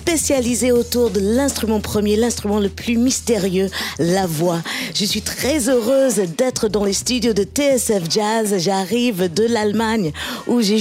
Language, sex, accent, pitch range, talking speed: French, female, French, 185-235 Hz, 150 wpm